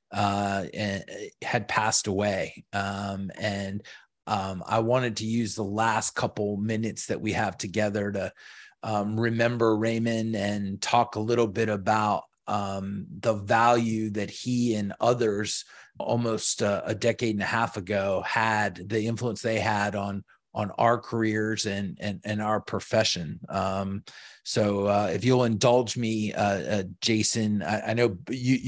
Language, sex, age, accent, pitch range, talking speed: English, male, 30-49, American, 105-120 Hz, 150 wpm